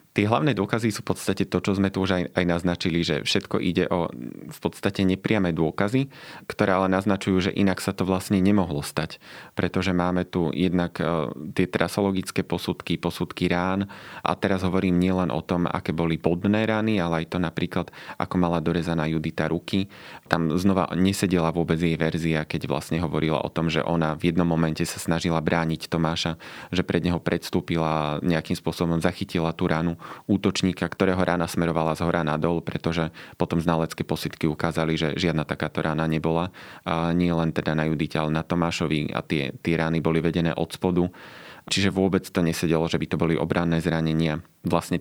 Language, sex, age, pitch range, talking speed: Slovak, male, 30-49, 80-95 Hz, 180 wpm